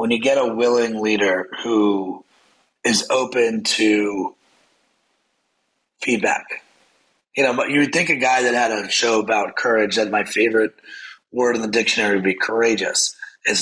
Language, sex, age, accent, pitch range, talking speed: English, male, 30-49, American, 115-130 Hz, 155 wpm